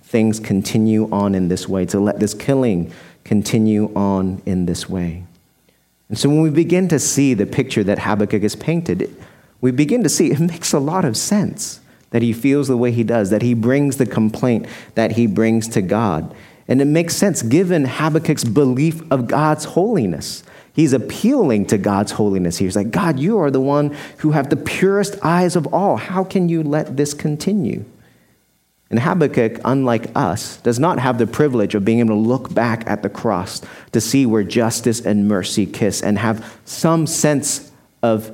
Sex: male